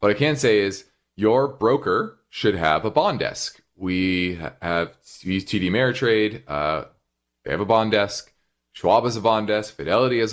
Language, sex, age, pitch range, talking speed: English, male, 30-49, 85-105 Hz, 170 wpm